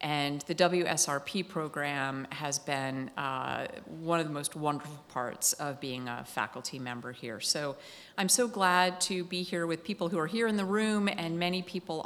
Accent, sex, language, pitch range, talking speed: American, female, English, 150-195 Hz, 185 wpm